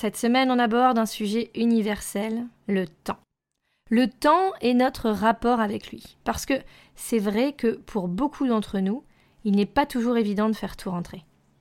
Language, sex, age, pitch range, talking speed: French, female, 20-39, 195-240 Hz, 175 wpm